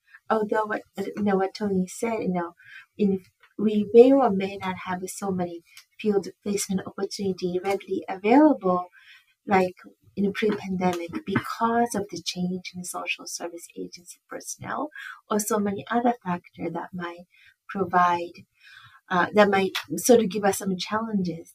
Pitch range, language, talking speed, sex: 180-220 Hz, English, 150 wpm, female